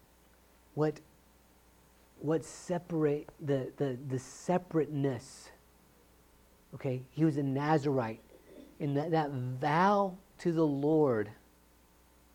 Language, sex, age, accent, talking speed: English, male, 50-69, American, 90 wpm